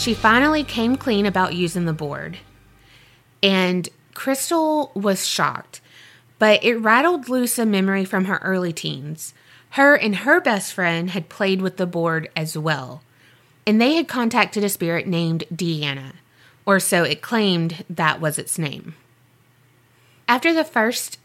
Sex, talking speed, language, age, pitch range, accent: female, 150 wpm, English, 20-39, 160-215 Hz, American